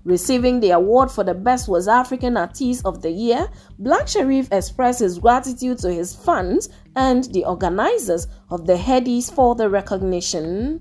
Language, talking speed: English, 160 wpm